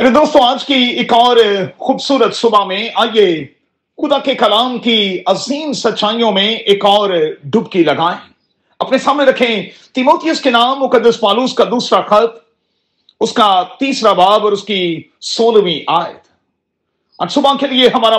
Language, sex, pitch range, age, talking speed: Urdu, male, 200-265 Hz, 40-59, 145 wpm